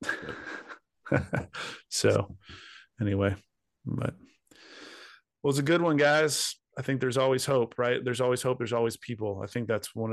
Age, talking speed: 30-49, 150 wpm